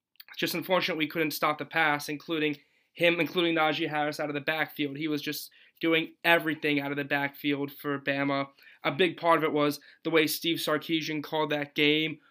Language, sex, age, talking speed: English, male, 20-39, 195 wpm